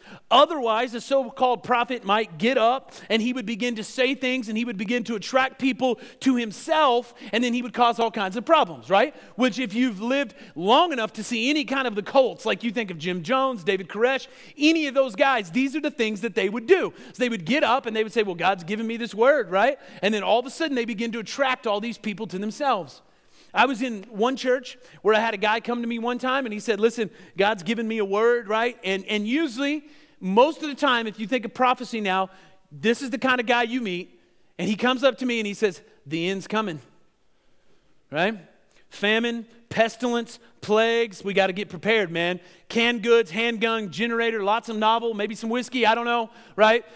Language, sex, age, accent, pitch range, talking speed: English, male, 40-59, American, 215-260 Hz, 230 wpm